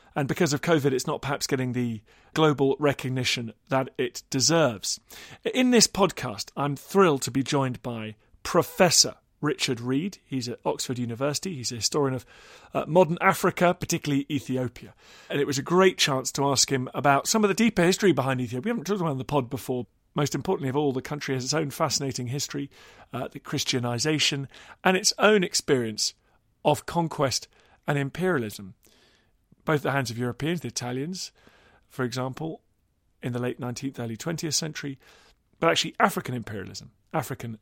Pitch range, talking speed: 125-165 Hz, 170 wpm